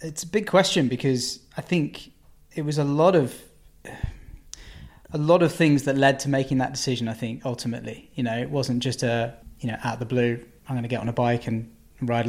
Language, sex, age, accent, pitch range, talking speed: English, male, 20-39, British, 125-150 Hz, 225 wpm